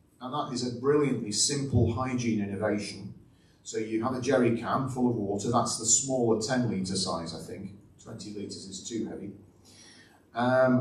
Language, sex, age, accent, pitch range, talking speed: English, male, 40-59, British, 110-130 Hz, 170 wpm